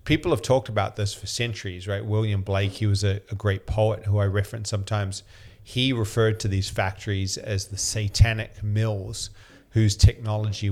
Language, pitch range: English, 100-110 Hz